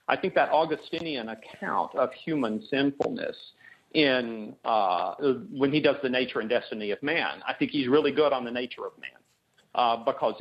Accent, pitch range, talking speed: American, 125-160 Hz, 180 wpm